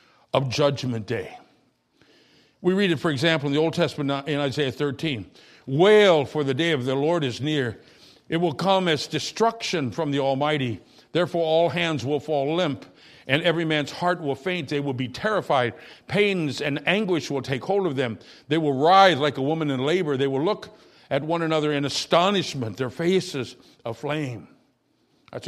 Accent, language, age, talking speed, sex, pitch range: American, English, 60-79, 180 wpm, male, 140-185 Hz